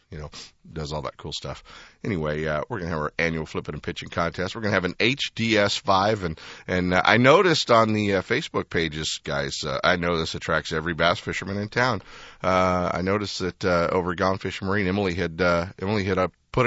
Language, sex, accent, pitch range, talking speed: English, male, American, 80-105 Hz, 225 wpm